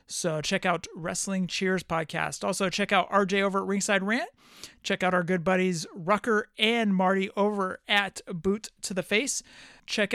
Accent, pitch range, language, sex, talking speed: American, 180-225 Hz, English, male, 170 wpm